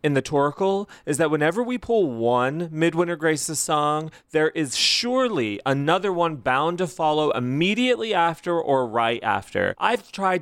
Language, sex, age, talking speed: English, male, 30-49, 155 wpm